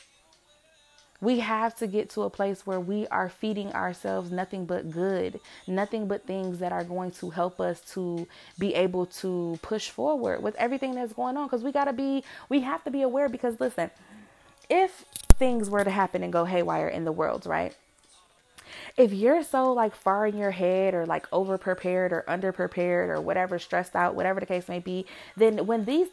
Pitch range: 185-260 Hz